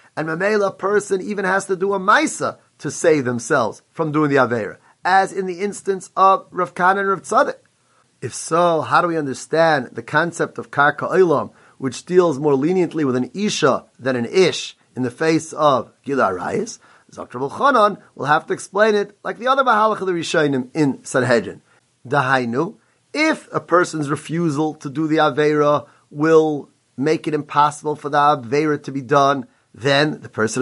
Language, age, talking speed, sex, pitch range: English, 30-49, 175 wpm, male, 140-195 Hz